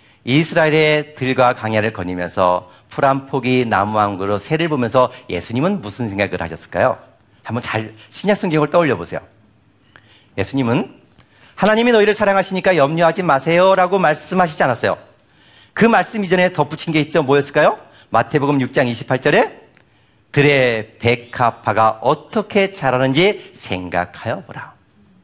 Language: Korean